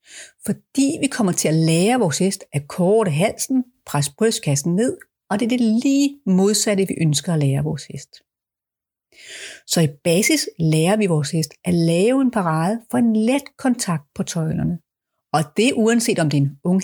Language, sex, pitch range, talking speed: Danish, female, 165-235 Hz, 180 wpm